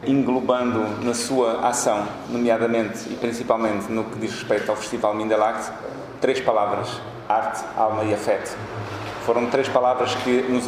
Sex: male